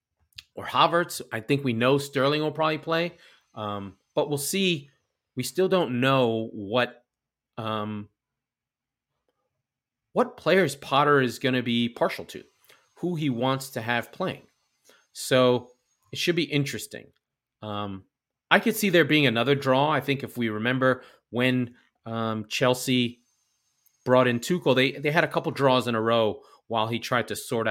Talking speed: 160 wpm